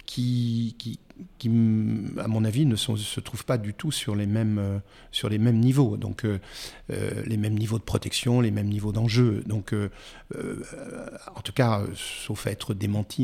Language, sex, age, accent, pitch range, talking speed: French, male, 50-69, French, 105-125 Hz, 200 wpm